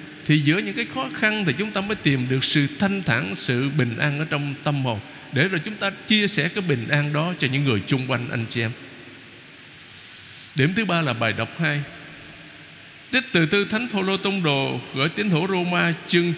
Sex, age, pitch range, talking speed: male, 60-79, 145-205 Hz, 215 wpm